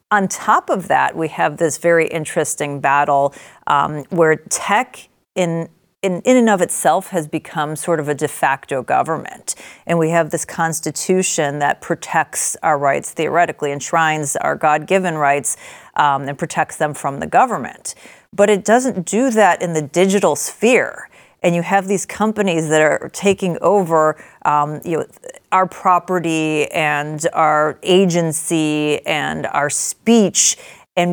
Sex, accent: female, American